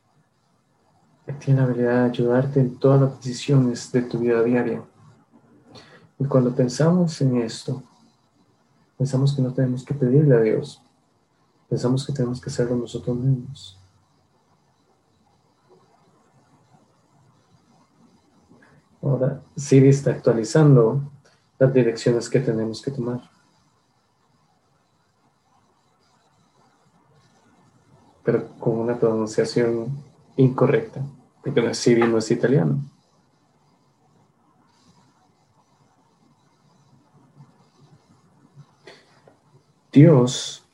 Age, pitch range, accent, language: 40-59, 120-140 Hz, Mexican, English